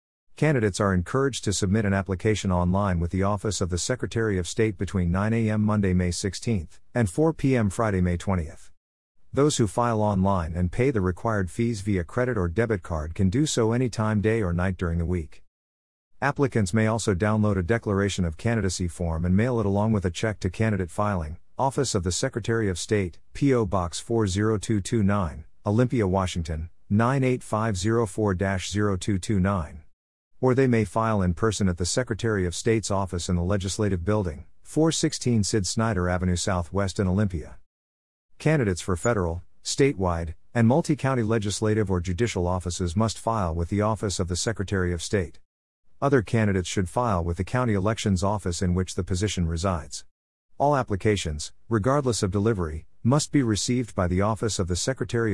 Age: 50-69